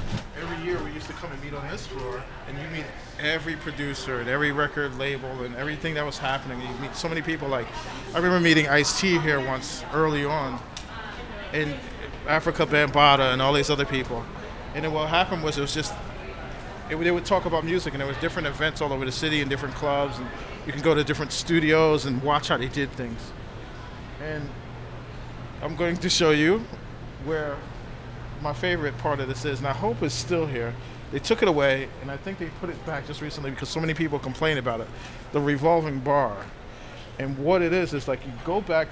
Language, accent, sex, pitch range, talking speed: English, American, male, 130-160 Hz, 210 wpm